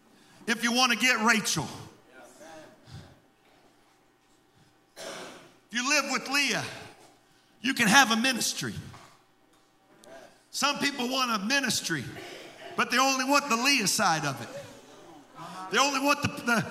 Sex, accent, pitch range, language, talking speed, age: male, American, 235-310 Hz, English, 125 wpm, 50-69